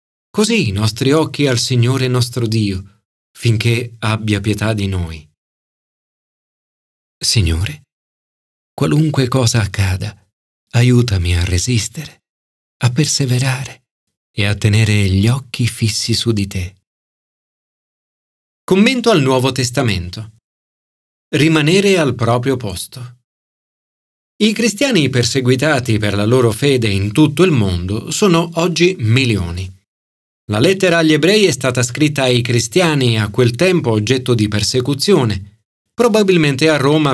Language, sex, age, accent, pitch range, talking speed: Italian, male, 40-59, native, 105-155 Hz, 115 wpm